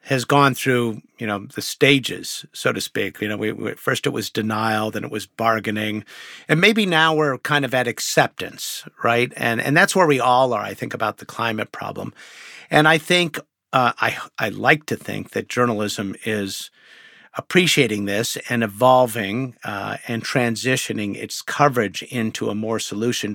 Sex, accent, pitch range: male, American, 110-145 Hz